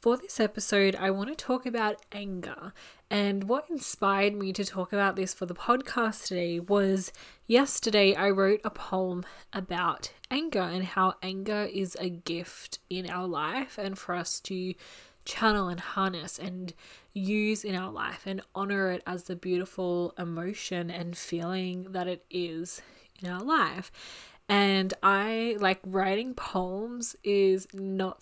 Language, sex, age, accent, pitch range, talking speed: English, female, 20-39, Australian, 180-205 Hz, 155 wpm